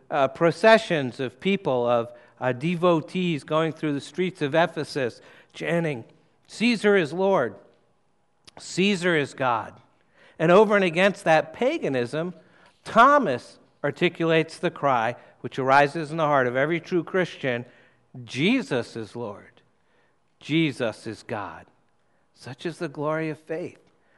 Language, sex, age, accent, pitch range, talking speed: English, male, 60-79, American, 140-180 Hz, 125 wpm